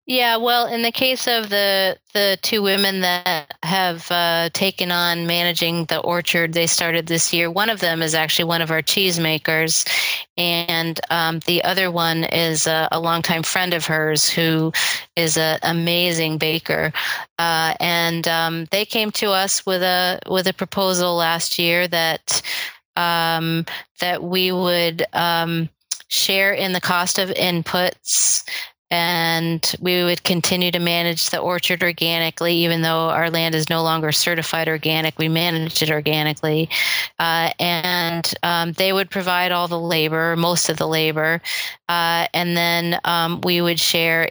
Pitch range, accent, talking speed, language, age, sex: 165-180 Hz, American, 160 wpm, English, 30-49, female